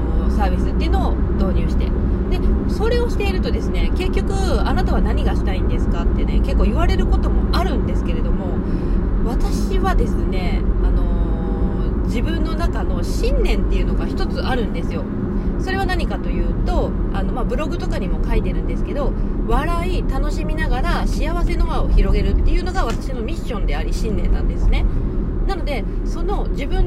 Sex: female